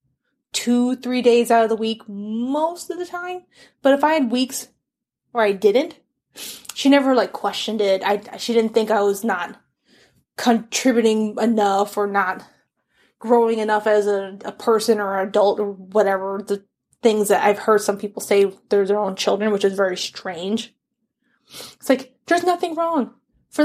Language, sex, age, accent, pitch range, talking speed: English, female, 20-39, American, 205-270 Hz, 175 wpm